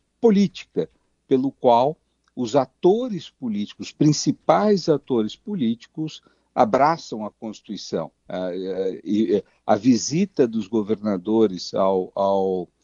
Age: 60-79